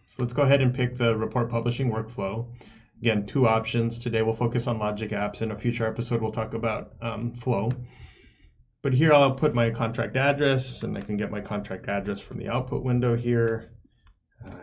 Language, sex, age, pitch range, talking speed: English, male, 20-39, 110-130 Hz, 195 wpm